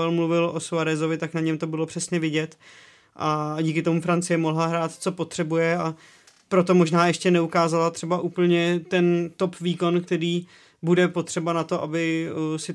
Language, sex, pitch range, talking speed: Czech, male, 160-170 Hz, 165 wpm